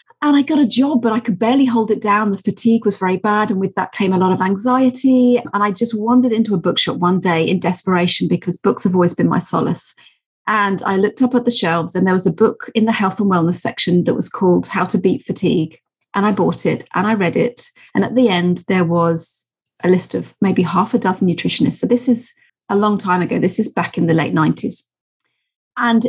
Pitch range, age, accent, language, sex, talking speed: 185-235 Hz, 30-49, British, English, female, 240 wpm